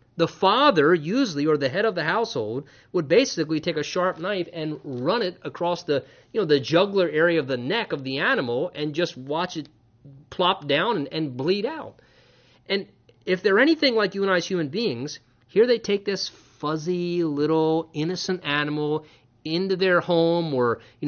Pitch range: 155-200 Hz